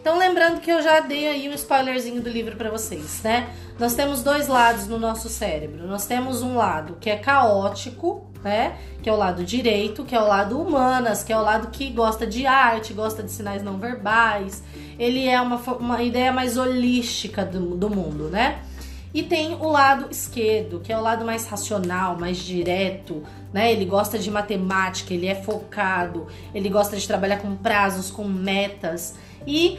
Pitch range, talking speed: 200-255 Hz, 185 wpm